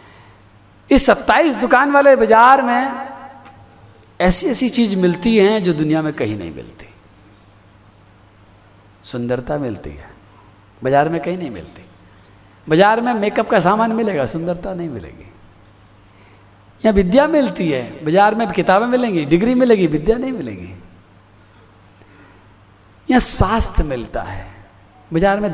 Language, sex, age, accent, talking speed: Hindi, male, 50-69, native, 125 wpm